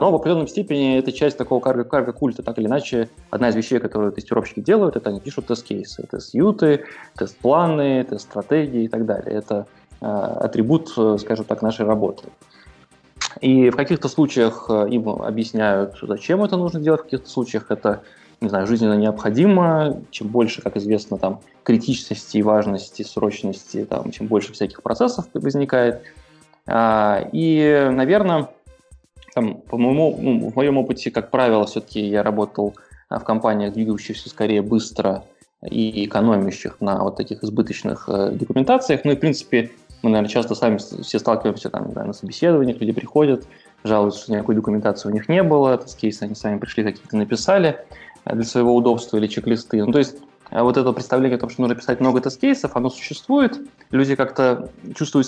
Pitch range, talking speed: 110-140 Hz, 160 wpm